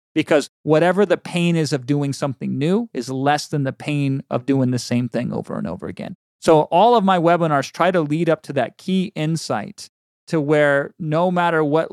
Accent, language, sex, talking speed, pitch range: American, English, male, 205 wpm, 135-170 Hz